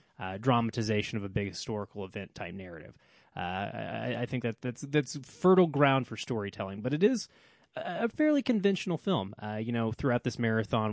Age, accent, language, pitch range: 20-39, American, English, 105-145 Hz